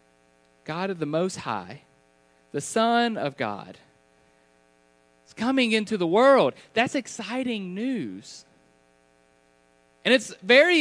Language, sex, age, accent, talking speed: English, male, 30-49, American, 110 wpm